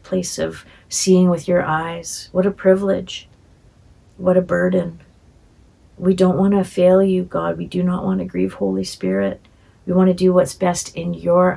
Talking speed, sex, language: 180 wpm, female, English